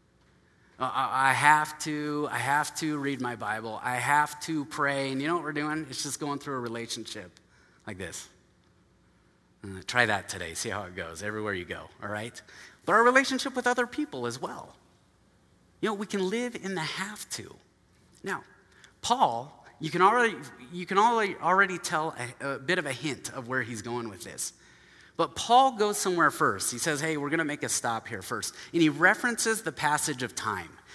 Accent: American